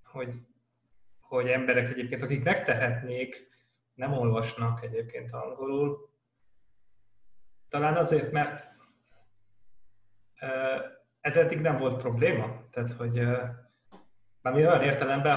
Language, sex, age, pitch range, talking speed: Hungarian, male, 30-49, 115-130 Hz, 95 wpm